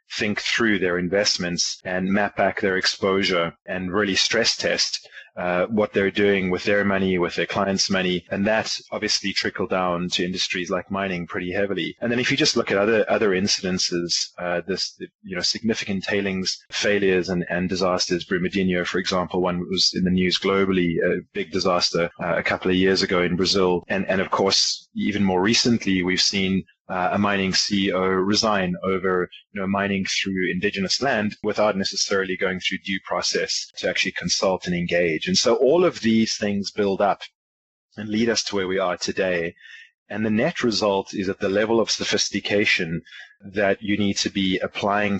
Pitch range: 90-105 Hz